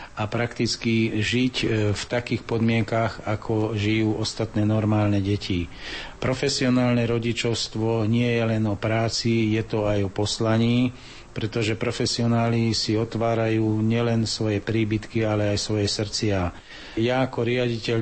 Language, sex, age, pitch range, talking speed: Slovak, male, 40-59, 110-120 Hz, 125 wpm